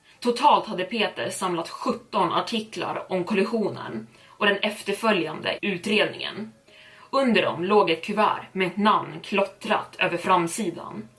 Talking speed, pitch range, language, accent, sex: 125 wpm, 180-210 Hz, Swedish, native, female